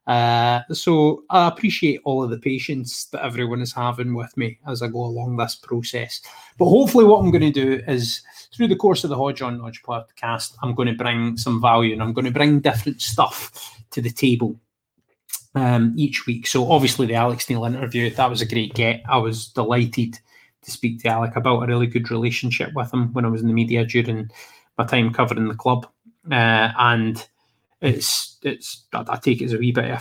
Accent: British